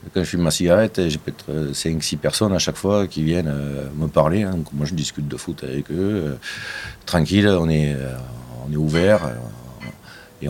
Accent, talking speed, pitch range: French, 170 wpm, 75-105 Hz